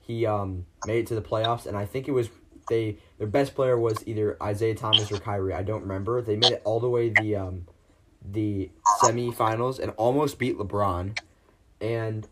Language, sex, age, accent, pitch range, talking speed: English, male, 20-39, American, 95-115 Hz, 200 wpm